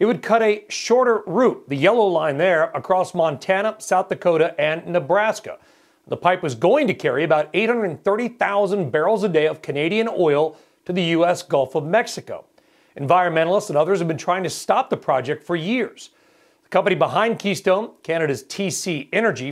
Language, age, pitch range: English, 40-59, 160-205 Hz